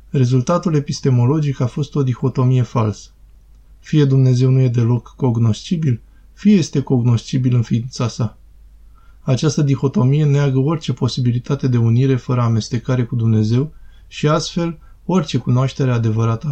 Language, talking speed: Romanian, 125 wpm